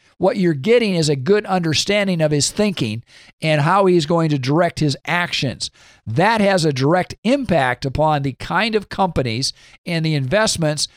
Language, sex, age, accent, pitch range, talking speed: English, male, 50-69, American, 140-175 Hz, 170 wpm